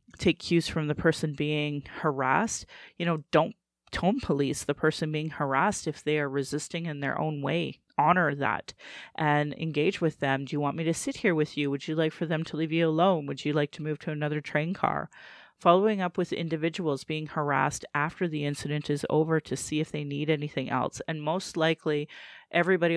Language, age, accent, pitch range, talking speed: English, 30-49, American, 145-165 Hz, 205 wpm